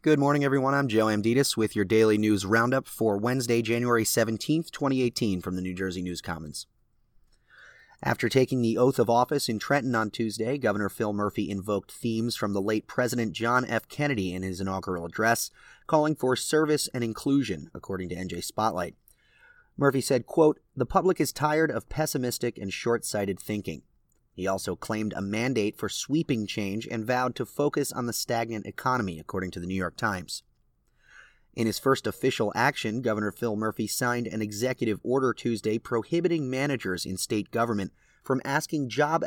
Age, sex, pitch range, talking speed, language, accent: 30-49, male, 105-130 Hz, 170 wpm, English, American